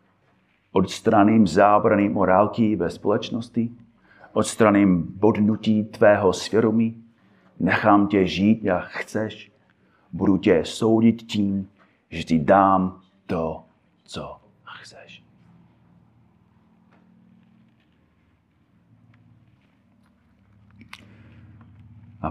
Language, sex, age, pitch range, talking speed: Czech, male, 40-59, 85-110 Hz, 70 wpm